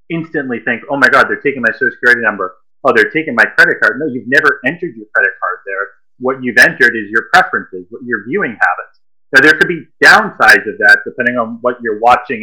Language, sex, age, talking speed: English, male, 30-49, 225 wpm